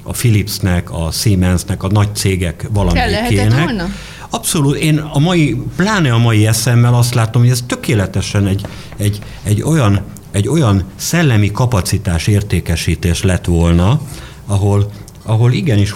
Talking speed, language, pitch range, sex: 130 wpm, Hungarian, 85-125 Hz, male